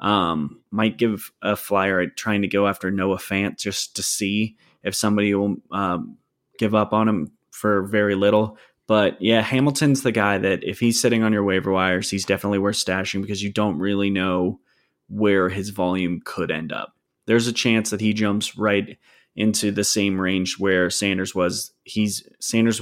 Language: English